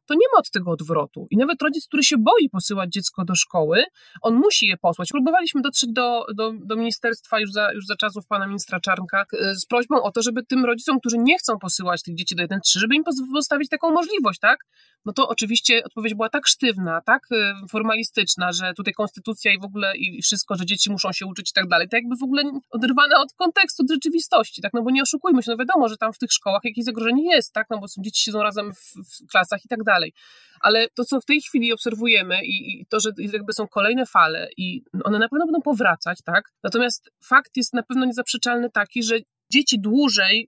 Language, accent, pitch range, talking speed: Polish, native, 200-260 Hz, 220 wpm